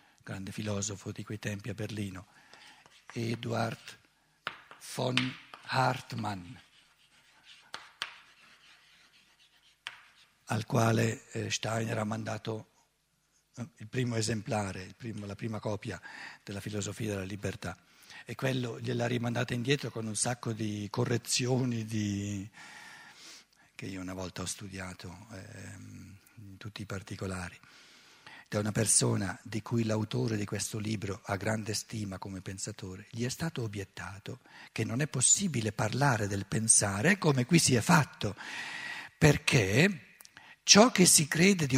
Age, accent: 50-69, native